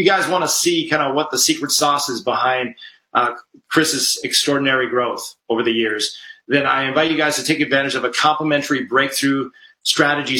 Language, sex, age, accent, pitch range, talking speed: English, male, 40-59, American, 130-150 Hz, 190 wpm